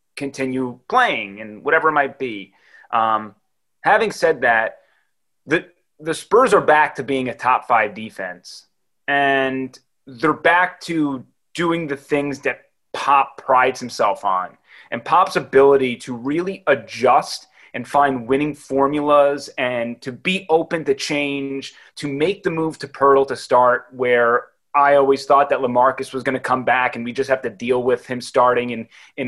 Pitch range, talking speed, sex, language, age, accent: 125-150 Hz, 165 wpm, male, English, 30-49, American